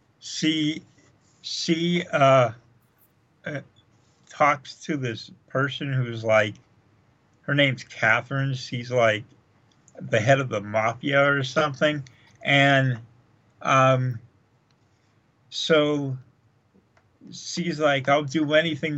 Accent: American